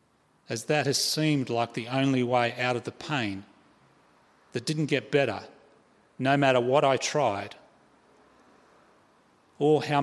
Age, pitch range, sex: 40-59, 125-150 Hz, male